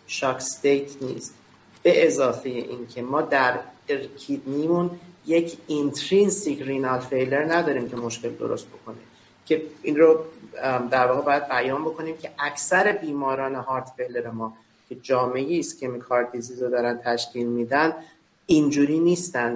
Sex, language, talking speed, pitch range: male, Persian, 130 wpm, 120-150 Hz